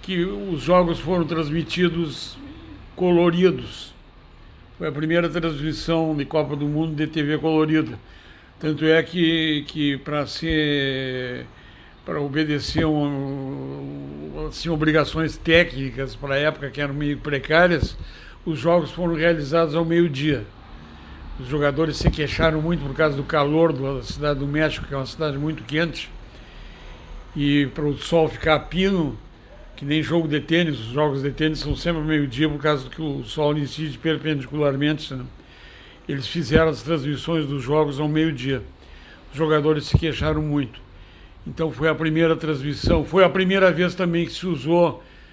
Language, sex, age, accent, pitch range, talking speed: Portuguese, male, 60-79, Brazilian, 140-165 Hz, 145 wpm